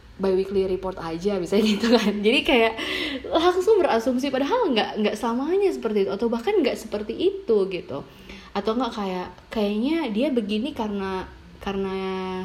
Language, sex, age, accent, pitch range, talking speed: Indonesian, female, 20-39, native, 185-255 Hz, 145 wpm